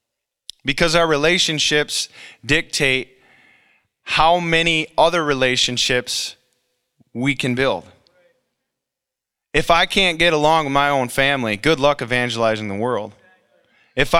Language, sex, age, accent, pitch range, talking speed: English, male, 20-39, American, 125-165 Hz, 110 wpm